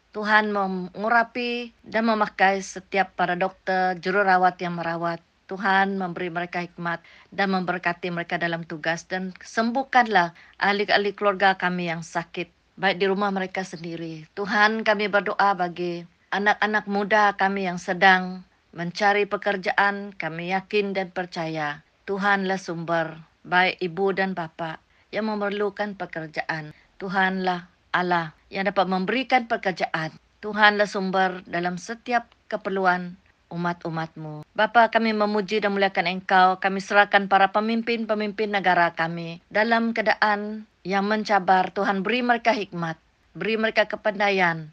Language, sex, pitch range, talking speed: Malay, female, 175-210 Hz, 120 wpm